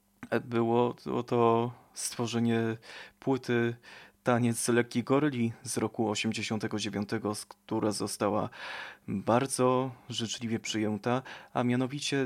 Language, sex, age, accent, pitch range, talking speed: Polish, male, 20-39, native, 110-125 Hz, 85 wpm